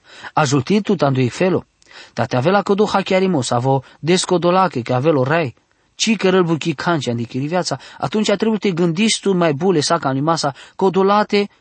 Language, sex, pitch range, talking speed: English, male, 140-185 Hz, 150 wpm